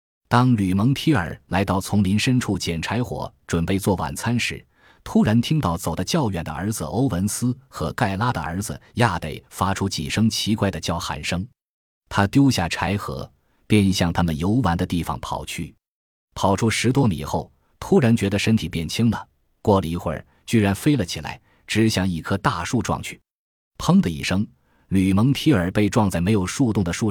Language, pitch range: Chinese, 85-115 Hz